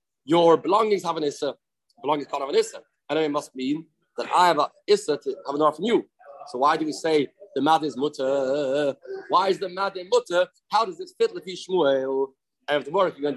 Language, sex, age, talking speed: English, male, 30-49, 230 wpm